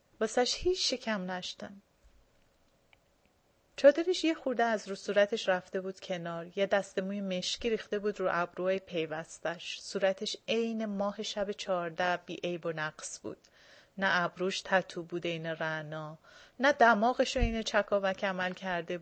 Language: English